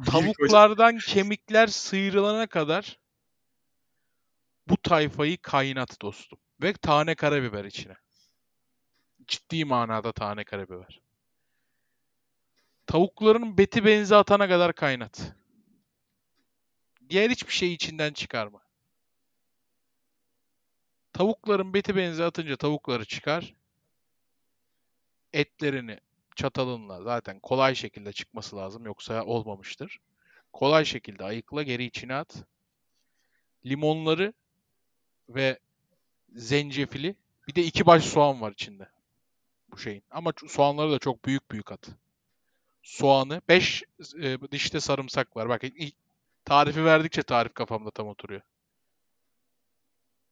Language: Turkish